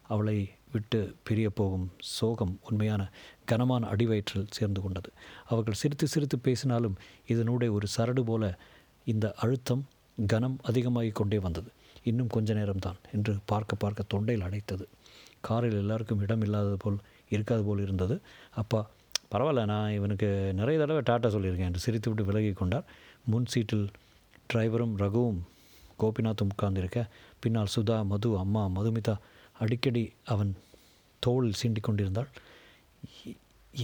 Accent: native